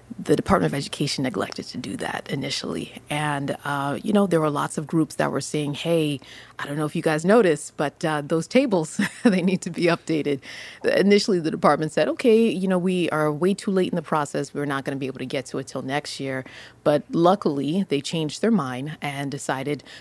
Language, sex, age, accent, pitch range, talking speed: English, female, 30-49, American, 140-170 Hz, 220 wpm